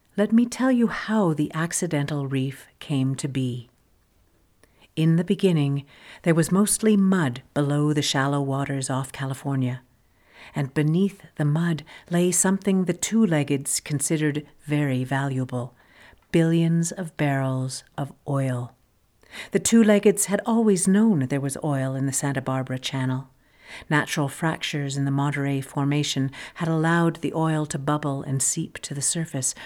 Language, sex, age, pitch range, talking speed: English, female, 50-69, 135-170 Hz, 140 wpm